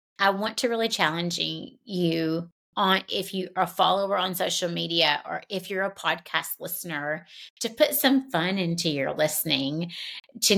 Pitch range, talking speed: 170-220 Hz, 165 wpm